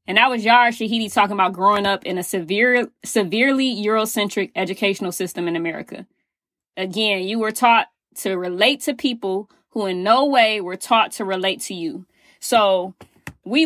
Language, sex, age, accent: English, female, 20-39, American